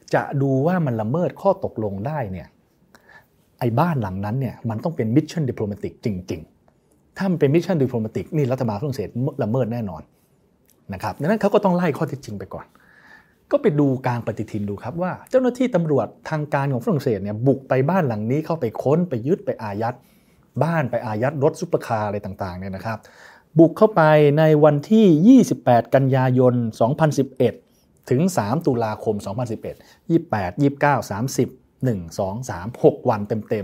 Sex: male